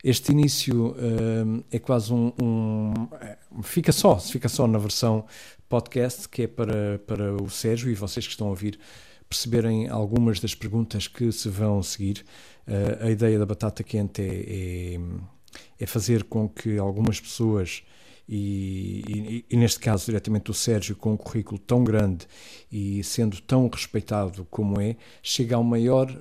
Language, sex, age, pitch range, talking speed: Portuguese, male, 50-69, 105-125 Hz, 165 wpm